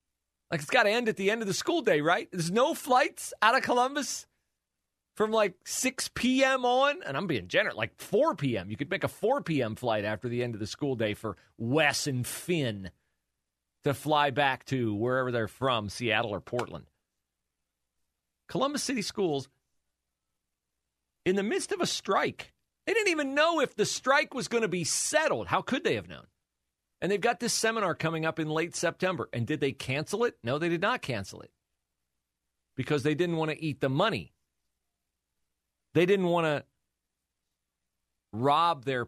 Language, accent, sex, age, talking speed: English, American, male, 40-59, 185 wpm